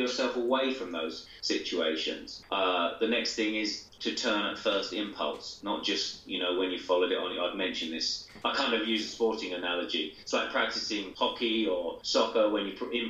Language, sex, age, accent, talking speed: English, male, 30-49, British, 200 wpm